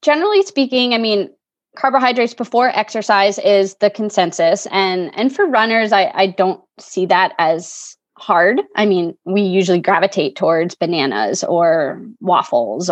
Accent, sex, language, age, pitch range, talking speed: American, female, English, 20-39, 175-220 Hz, 140 wpm